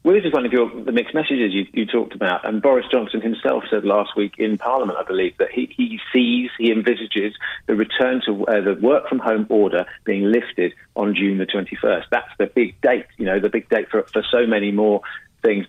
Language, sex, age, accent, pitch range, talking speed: English, male, 40-59, British, 100-120 Hz, 230 wpm